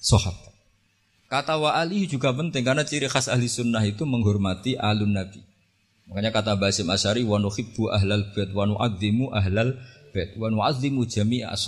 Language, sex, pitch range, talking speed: Indonesian, male, 100-115 Hz, 115 wpm